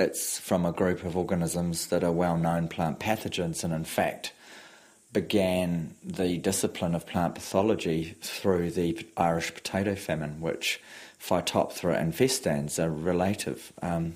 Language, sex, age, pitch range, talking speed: English, male, 30-49, 85-95 Hz, 135 wpm